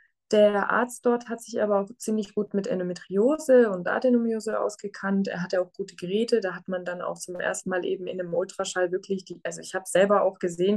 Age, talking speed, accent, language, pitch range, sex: 20-39, 215 wpm, German, German, 185-220 Hz, female